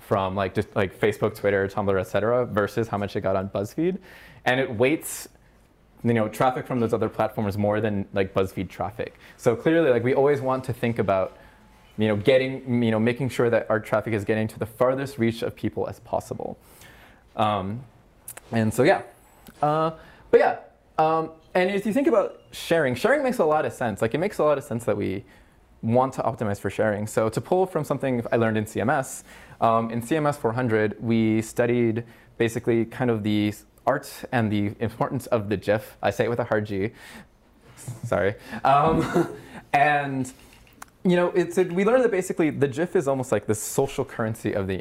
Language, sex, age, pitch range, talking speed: English, male, 20-39, 105-135 Hz, 195 wpm